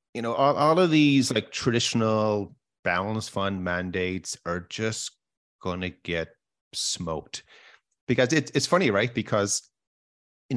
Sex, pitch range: male, 95-130 Hz